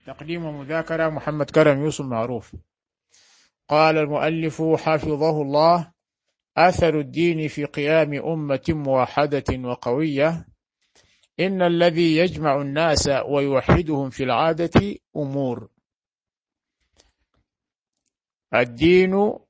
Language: Arabic